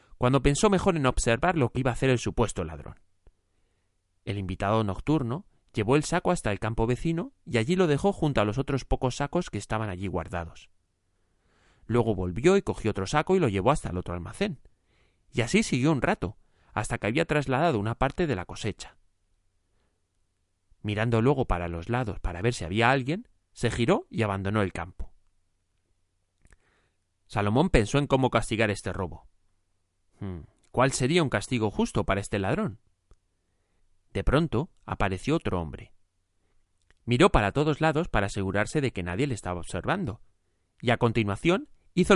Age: 30-49